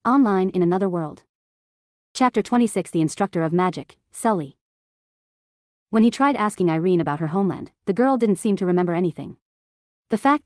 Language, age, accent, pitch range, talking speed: English, 30-49, American, 170-210 Hz, 160 wpm